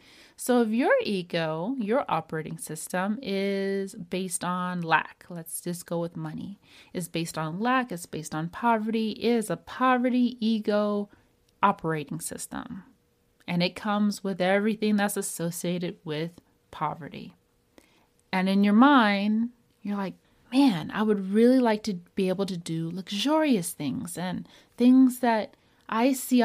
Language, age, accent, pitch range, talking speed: English, 30-49, American, 180-245 Hz, 140 wpm